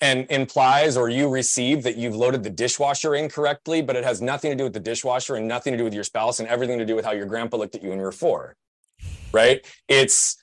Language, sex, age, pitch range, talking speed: English, male, 30-49, 115-150 Hz, 255 wpm